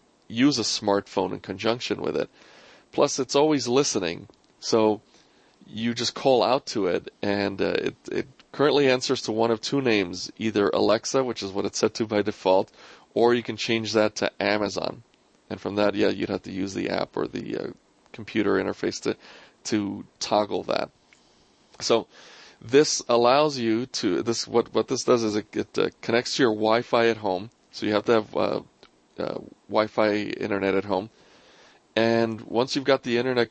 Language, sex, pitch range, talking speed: English, male, 105-120 Hz, 185 wpm